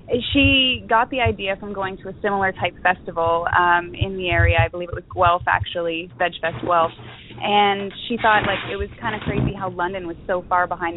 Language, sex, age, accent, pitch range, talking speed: English, female, 20-39, American, 175-200 Hz, 210 wpm